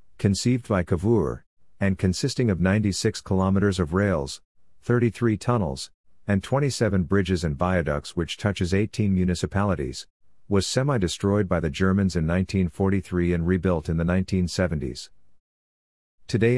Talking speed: 125 wpm